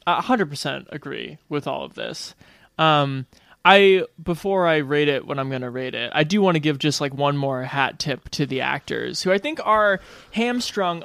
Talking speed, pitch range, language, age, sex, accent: 205 wpm, 140-175 Hz, English, 20-39, male, American